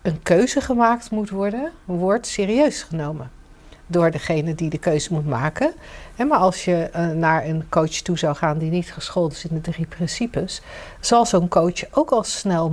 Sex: female